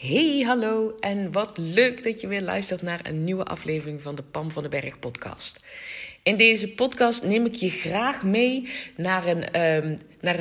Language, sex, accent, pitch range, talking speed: Dutch, female, Dutch, 165-220 Hz, 185 wpm